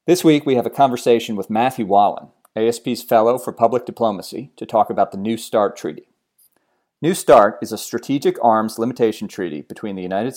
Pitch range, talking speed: 105-125 Hz, 185 wpm